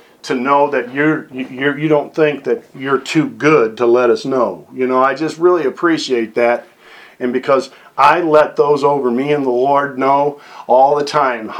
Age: 40-59